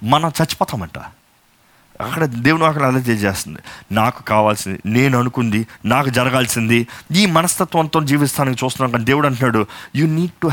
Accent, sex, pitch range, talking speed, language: native, male, 105-145 Hz, 125 wpm, Telugu